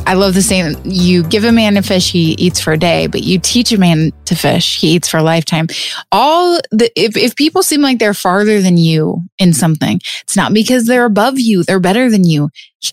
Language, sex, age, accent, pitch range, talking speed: English, female, 20-39, American, 180-215 Hz, 235 wpm